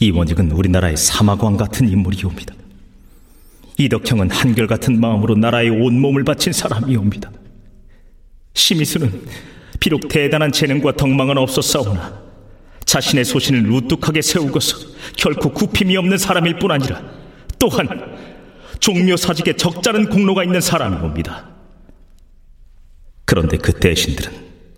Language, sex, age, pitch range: Korean, male, 40-59, 95-150 Hz